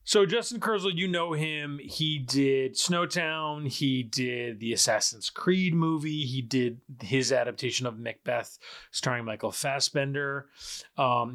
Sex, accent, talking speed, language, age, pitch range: male, American, 130 wpm, English, 30-49, 120-160 Hz